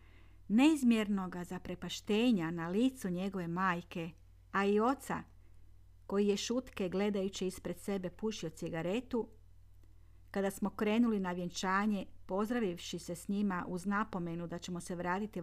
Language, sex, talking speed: Croatian, female, 130 wpm